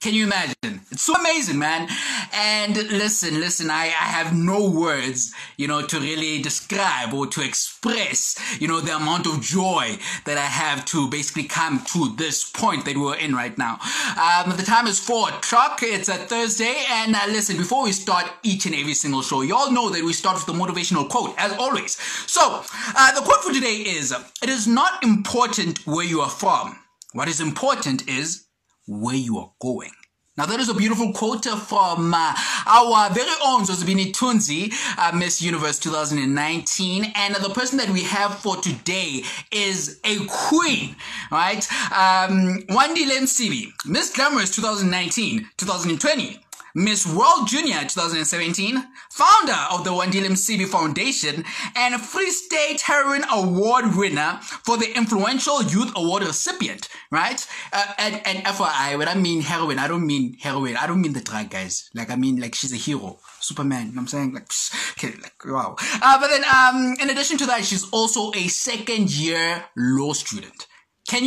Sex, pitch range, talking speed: male, 160-230 Hz, 175 wpm